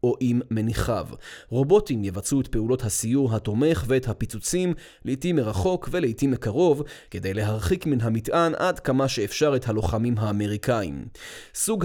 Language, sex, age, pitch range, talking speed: Hebrew, male, 20-39, 115-145 Hz, 125 wpm